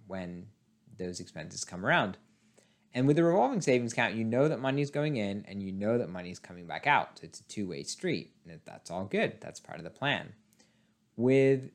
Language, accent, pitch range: English, American, 95-135 Hz